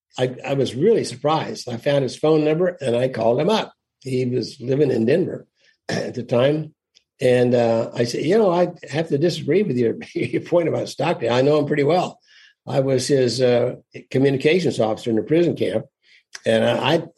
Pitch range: 125-155 Hz